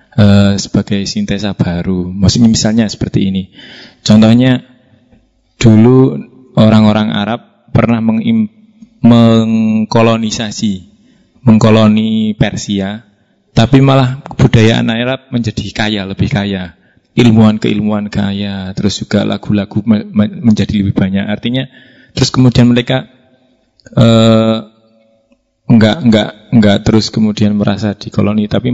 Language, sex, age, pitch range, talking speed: Indonesian, male, 20-39, 100-115 Hz, 100 wpm